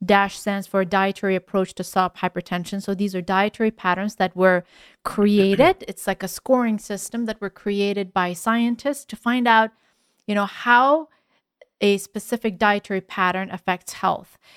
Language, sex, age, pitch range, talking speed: English, female, 40-59, 185-230 Hz, 155 wpm